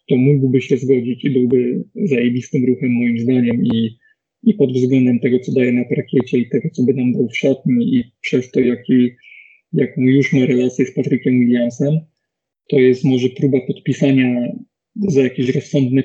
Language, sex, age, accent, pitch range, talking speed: Polish, male, 20-39, native, 125-140 Hz, 170 wpm